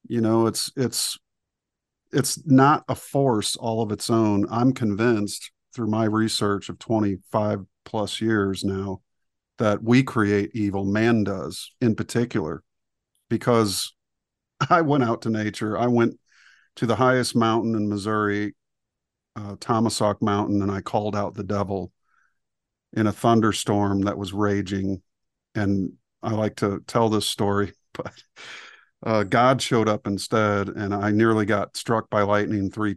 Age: 50-69